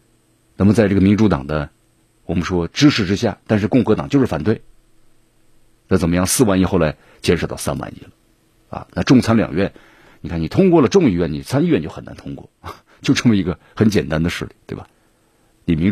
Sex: male